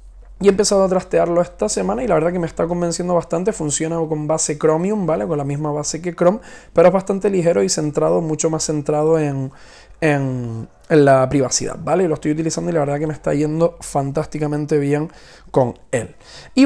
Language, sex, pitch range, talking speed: Spanish, male, 150-180 Hz, 205 wpm